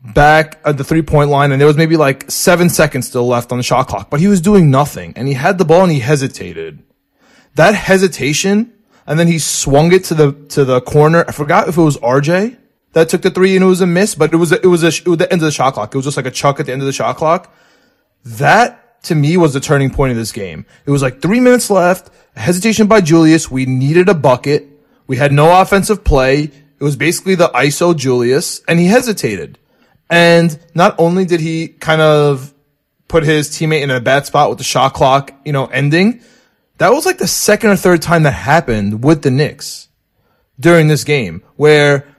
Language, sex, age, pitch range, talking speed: English, male, 20-39, 145-185 Hz, 230 wpm